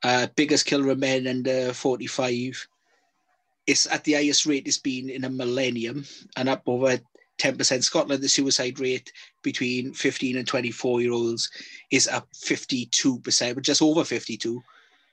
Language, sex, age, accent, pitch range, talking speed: English, male, 30-49, British, 120-145 Hz, 145 wpm